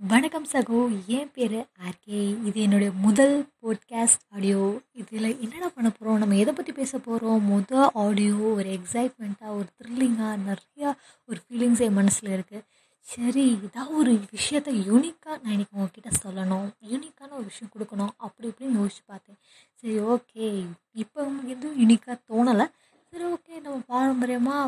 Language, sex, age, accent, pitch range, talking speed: Tamil, female, 20-39, native, 195-245 Hz, 140 wpm